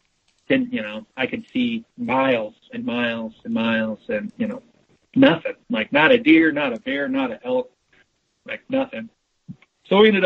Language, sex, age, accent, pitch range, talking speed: English, male, 40-59, American, 180-265 Hz, 175 wpm